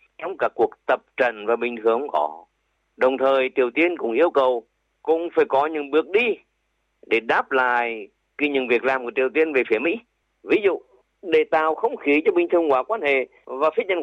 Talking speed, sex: 215 wpm, male